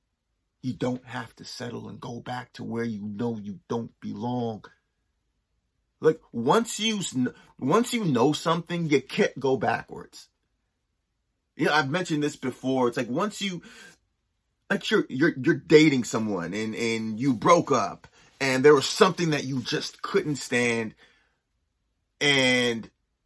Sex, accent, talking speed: male, American, 145 wpm